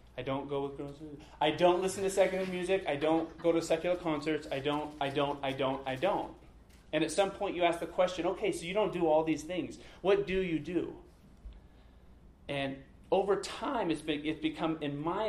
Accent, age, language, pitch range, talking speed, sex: American, 30-49, English, 145-175 Hz, 210 wpm, male